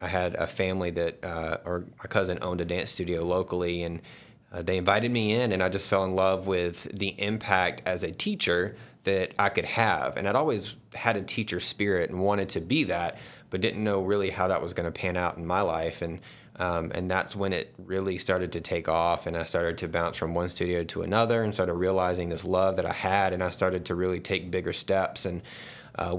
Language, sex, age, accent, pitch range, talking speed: English, male, 30-49, American, 90-95 Hz, 230 wpm